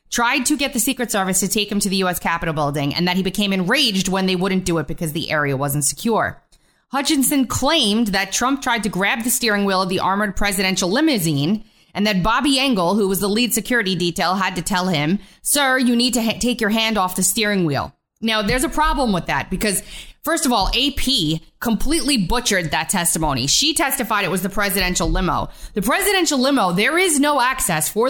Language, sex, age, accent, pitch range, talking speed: English, female, 20-39, American, 180-250 Hz, 210 wpm